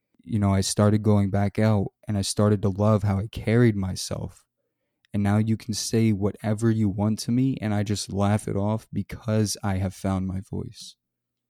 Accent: American